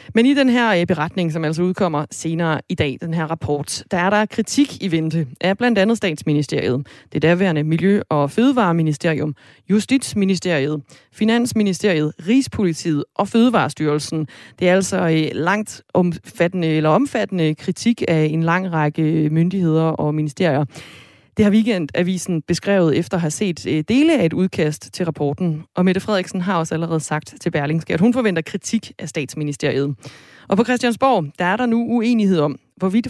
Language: Danish